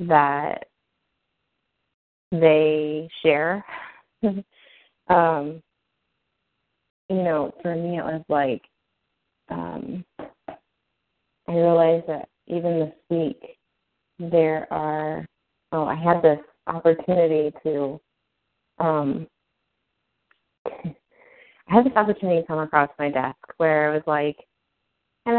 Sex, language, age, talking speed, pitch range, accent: female, English, 30-49, 95 wpm, 155-175 Hz, American